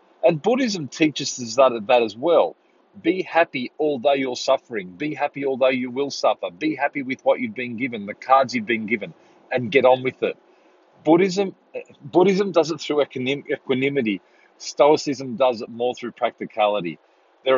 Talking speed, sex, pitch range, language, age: 165 wpm, male, 120-160 Hz, English, 40-59